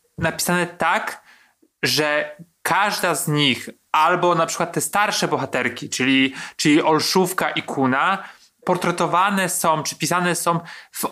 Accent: native